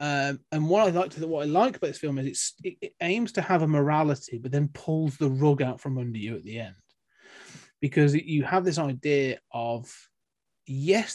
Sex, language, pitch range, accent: male, English, 130-185 Hz, British